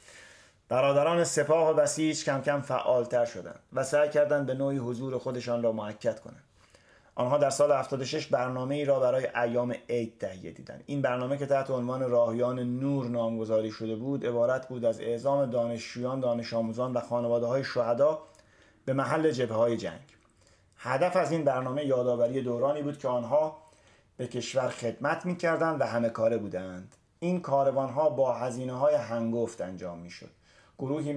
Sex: male